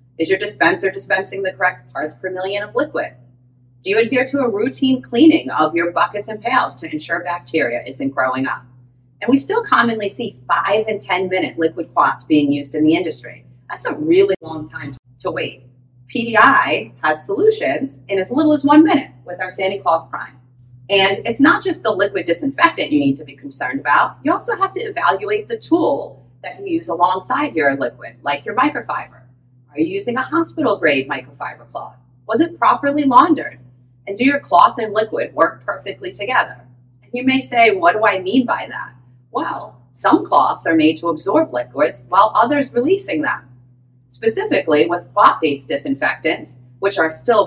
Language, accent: English, American